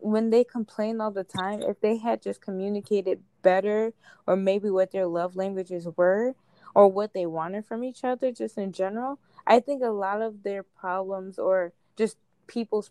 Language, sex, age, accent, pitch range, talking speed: English, female, 20-39, American, 175-210 Hz, 180 wpm